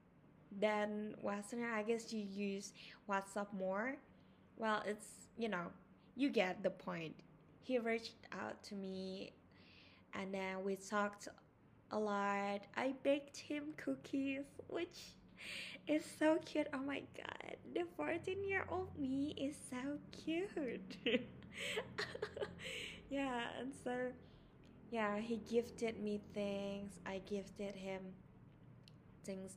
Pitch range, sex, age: 200-255 Hz, female, 20-39